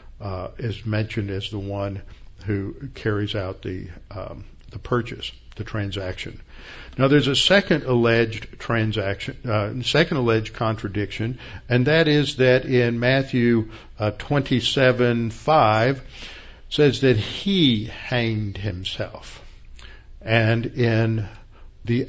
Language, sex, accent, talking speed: English, male, American, 115 wpm